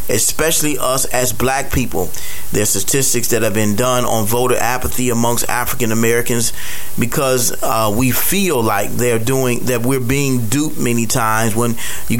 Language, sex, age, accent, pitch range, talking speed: English, male, 30-49, American, 115-130 Hz, 155 wpm